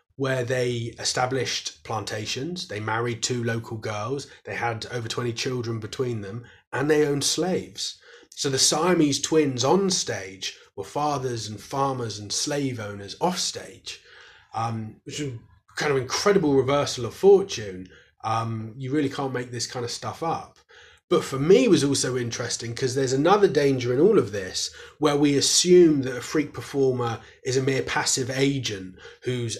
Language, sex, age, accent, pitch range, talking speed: English, male, 20-39, British, 115-145 Hz, 165 wpm